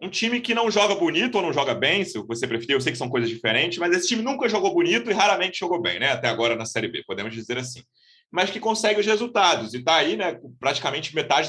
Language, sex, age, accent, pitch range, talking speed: Portuguese, male, 30-49, Brazilian, 125-205 Hz, 255 wpm